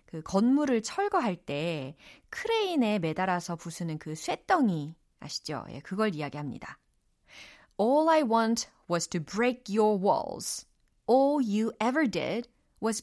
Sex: female